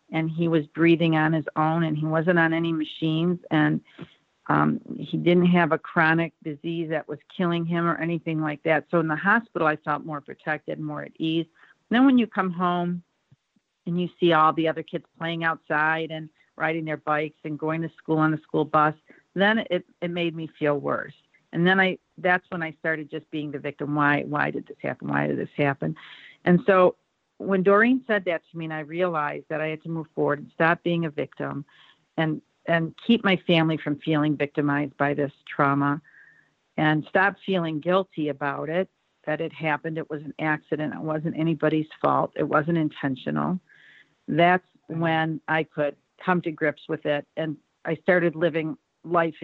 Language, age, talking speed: English, 50-69, 195 wpm